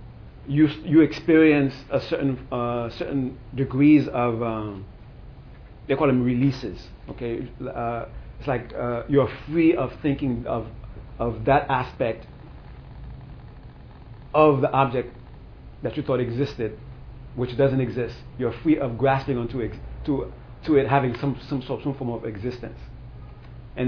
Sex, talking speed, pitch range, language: male, 140 wpm, 120-140 Hz, English